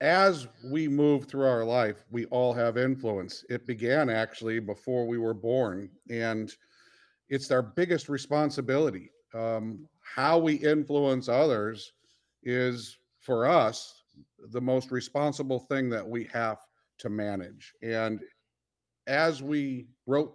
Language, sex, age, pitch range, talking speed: English, male, 50-69, 110-135 Hz, 125 wpm